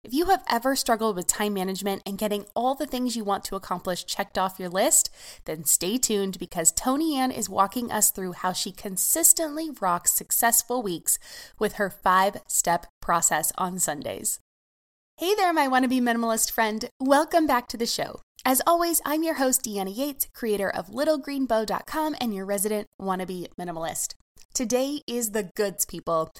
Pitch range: 190-255 Hz